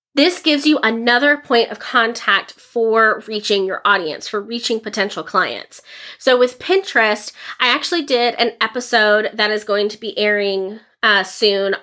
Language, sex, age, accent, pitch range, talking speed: English, female, 20-39, American, 215-255 Hz, 155 wpm